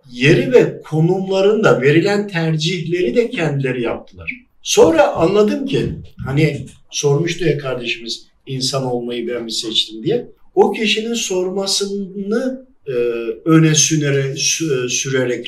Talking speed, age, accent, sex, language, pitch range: 105 wpm, 50-69, native, male, Turkish, 135-190 Hz